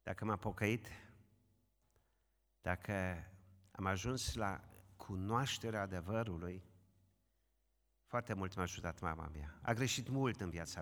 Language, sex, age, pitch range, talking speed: Romanian, male, 50-69, 95-125 Hz, 110 wpm